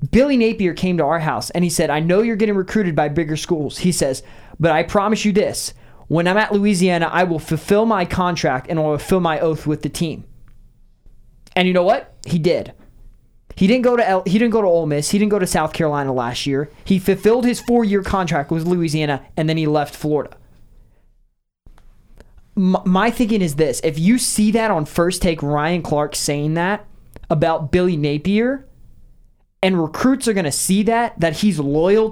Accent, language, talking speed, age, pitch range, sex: American, English, 190 wpm, 20-39, 155-200 Hz, male